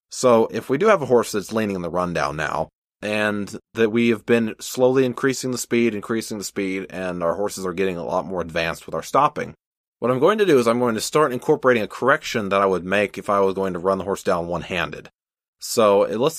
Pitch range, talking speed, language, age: 95-125 Hz, 240 wpm, English, 20-39